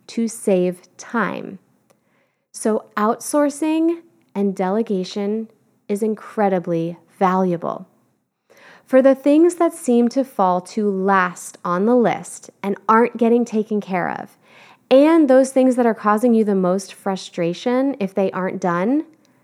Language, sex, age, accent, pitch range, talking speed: English, female, 20-39, American, 195-255 Hz, 130 wpm